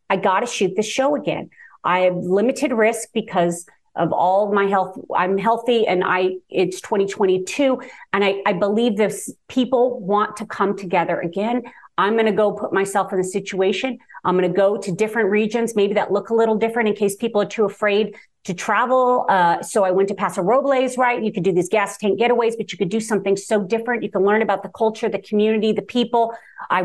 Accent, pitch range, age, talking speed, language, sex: American, 190-230 Hz, 40-59, 210 wpm, English, female